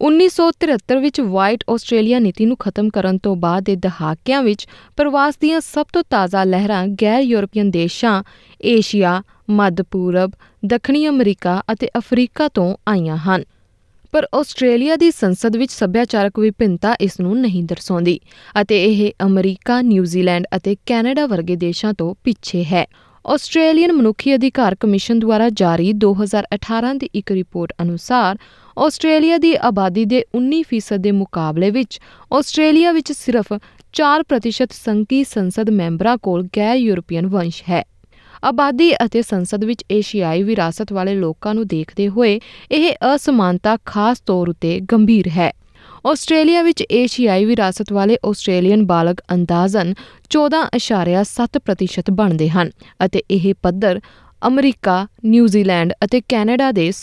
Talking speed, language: 110 wpm, Punjabi